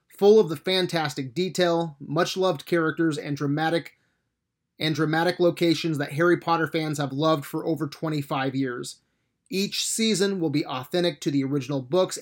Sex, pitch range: male, 145-170 Hz